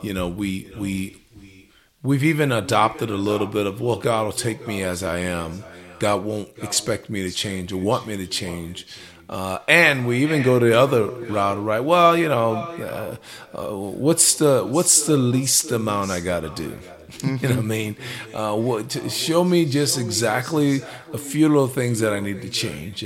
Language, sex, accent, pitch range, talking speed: English, male, American, 95-135 Hz, 195 wpm